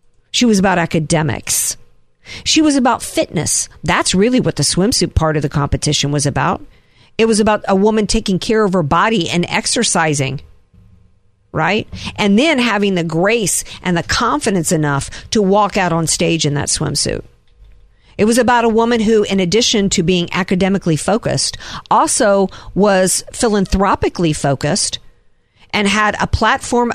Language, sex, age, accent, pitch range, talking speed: English, female, 50-69, American, 155-215 Hz, 155 wpm